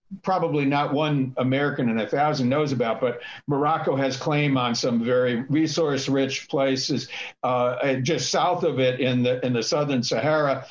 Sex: male